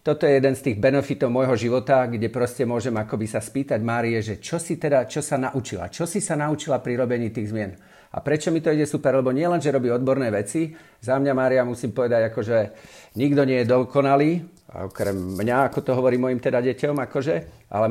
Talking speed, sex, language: 210 wpm, male, English